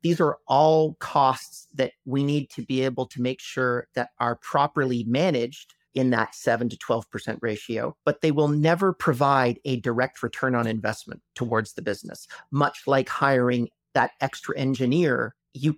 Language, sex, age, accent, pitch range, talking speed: English, male, 40-59, American, 120-150 Hz, 165 wpm